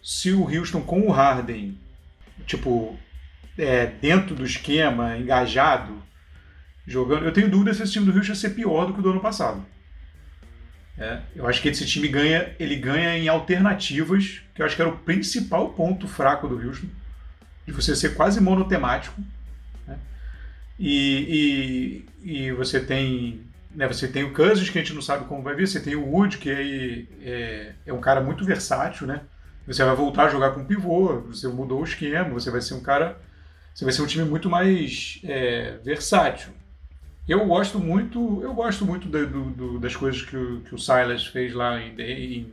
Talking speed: 180 wpm